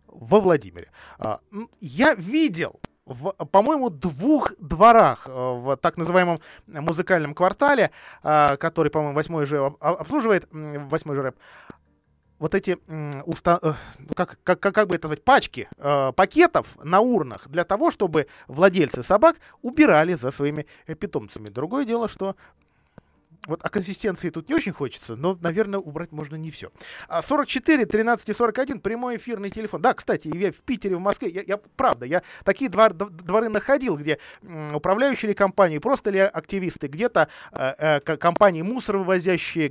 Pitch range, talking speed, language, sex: 155-215 Hz, 135 wpm, Russian, male